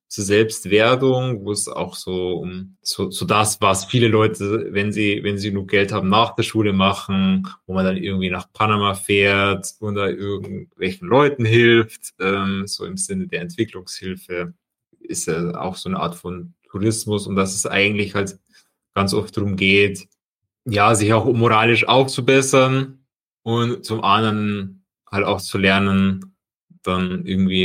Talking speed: 160 wpm